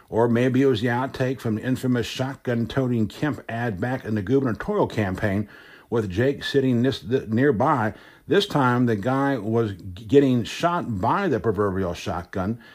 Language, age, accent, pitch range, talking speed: English, 60-79, American, 105-140 Hz, 150 wpm